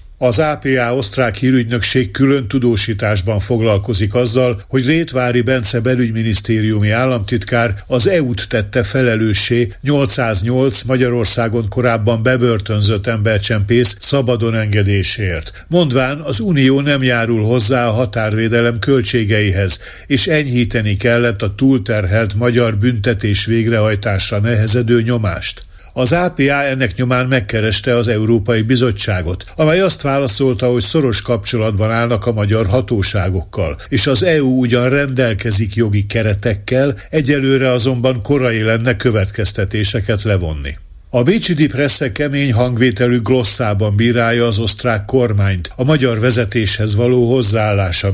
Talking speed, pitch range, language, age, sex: 110 wpm, 110-130 Hz, Hungarian, 50-69, male